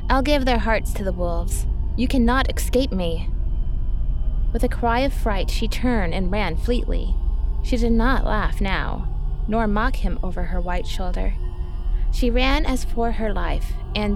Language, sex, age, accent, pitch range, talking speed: English, female, 20-39, American, 180-230 Hz, 170 wpm